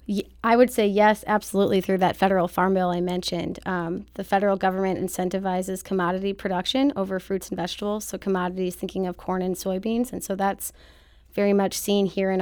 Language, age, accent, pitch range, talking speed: English, 20-39, American, 185-200 Hz, 185 wpm